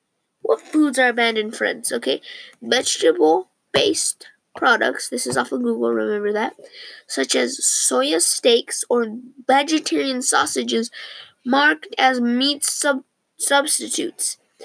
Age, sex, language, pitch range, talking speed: 10-29, female, English, 240-330 Hz, 110 wpm